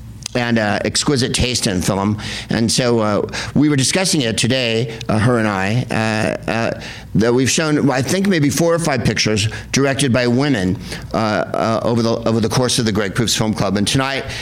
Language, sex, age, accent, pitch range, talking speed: English, male, 50-69, American, 115-150 Hz, 200 wpm